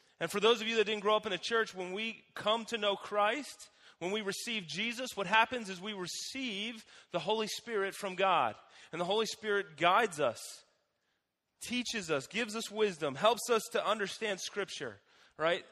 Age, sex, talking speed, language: 30-49, male, 185 wpm, English